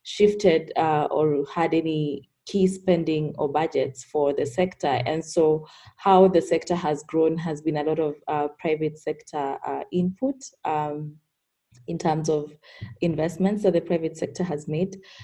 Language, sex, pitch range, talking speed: English, female, 150-170 Hz, 160 wpm